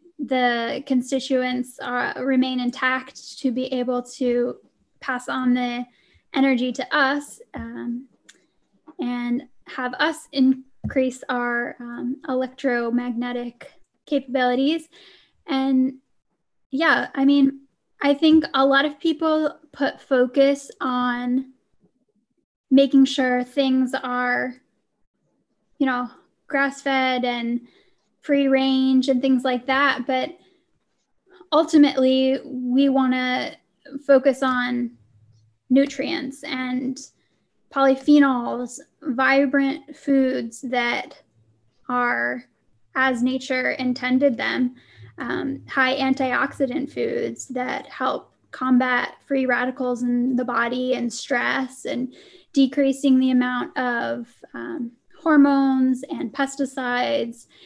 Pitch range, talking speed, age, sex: 250-275 Hz, 95 wpm, 10-29, female